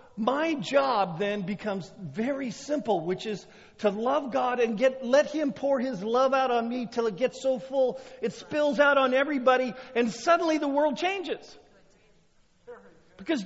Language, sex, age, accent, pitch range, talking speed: English, male, 40-59, American, 140-235 Hz, 165 wpm